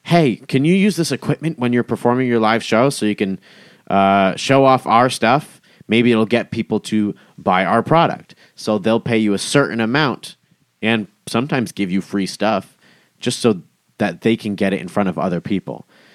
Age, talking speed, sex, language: 30-49, 195 wpm, male, English